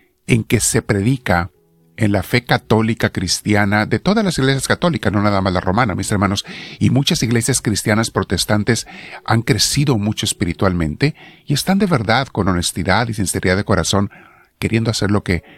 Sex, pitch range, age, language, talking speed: male, 105-145 Hz, 50-69, Spanish, 170 wpm